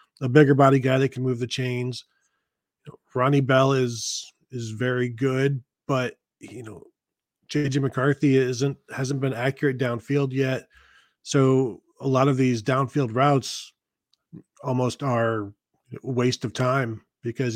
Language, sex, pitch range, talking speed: English, male, 125-140 Hz, 135 wpm